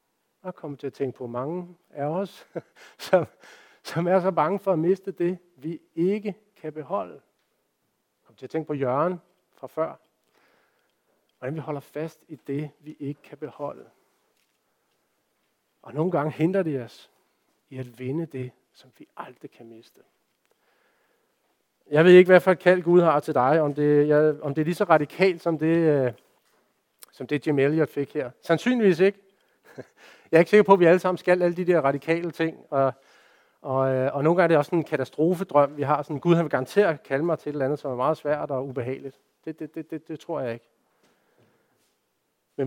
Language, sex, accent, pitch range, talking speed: Danish, male, native, 140-180 Hz, 195 wpm